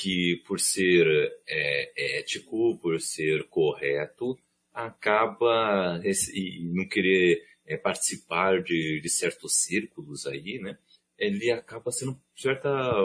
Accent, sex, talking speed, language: Brazilian, male, 115 wpm, Portuguese